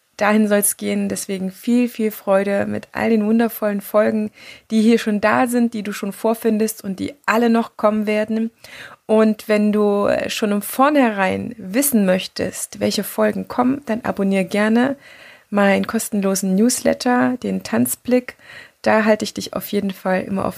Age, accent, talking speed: 20-39, German, 160 wpm